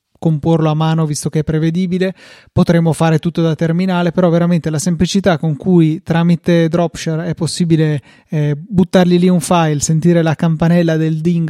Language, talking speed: Italian, 165 wpm